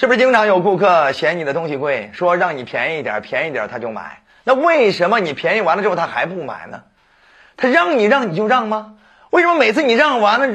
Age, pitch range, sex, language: 30-49, 175-245 Hz, male, Chinese